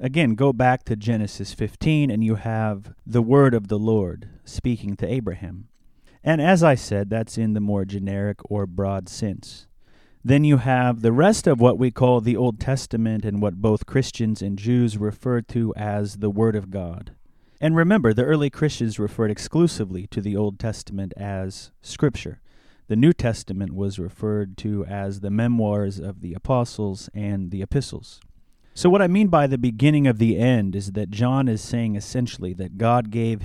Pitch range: 105-130 Hz